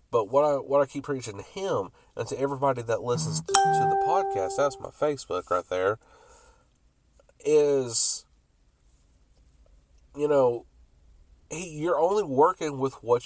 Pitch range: 115-175 Hz